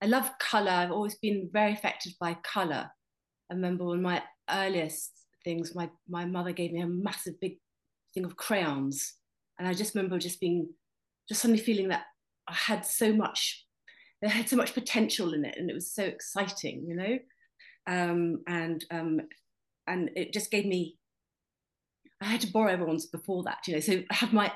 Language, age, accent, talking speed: English, 30-49, British, 185 wpm